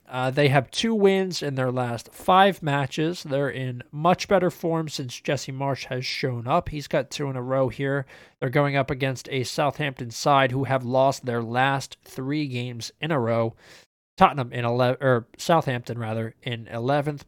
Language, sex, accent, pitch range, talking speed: English, male, American, 115-140 Hz, 185 wpm